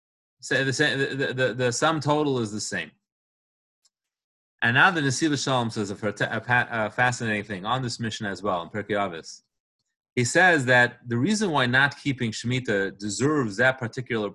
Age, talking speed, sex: 30-49, 180 wpm, male